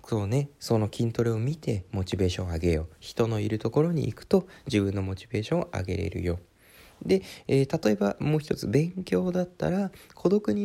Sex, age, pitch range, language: male, 20-39, 105-160 Hz, Japanese